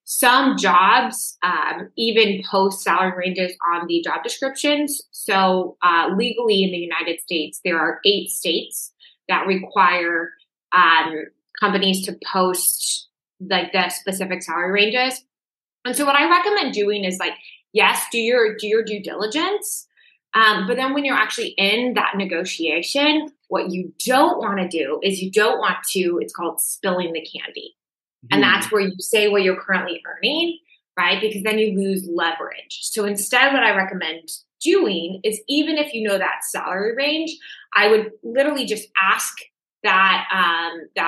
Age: 20-39